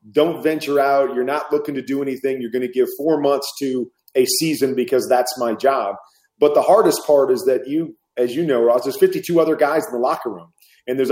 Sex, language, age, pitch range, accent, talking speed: male, English, 30-49, 130-170 Hz, American, 230 wpm